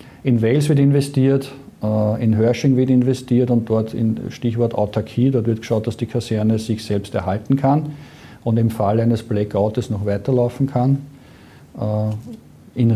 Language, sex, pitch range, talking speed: German, male, 110-125 Hz, 150 wpm